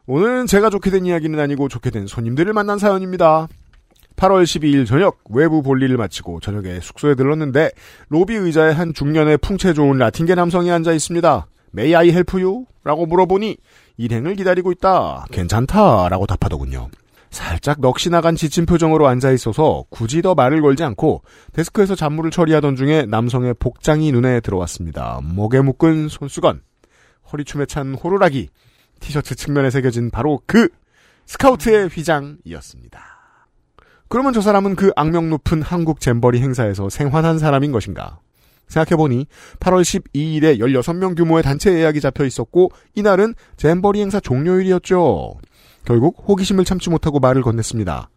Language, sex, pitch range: Korean, male, 125-180 Hz